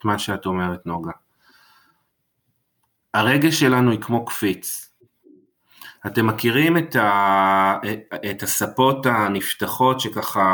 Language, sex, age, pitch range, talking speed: Hebrew, male, 30-49, 100-130 Hz, 95 wpm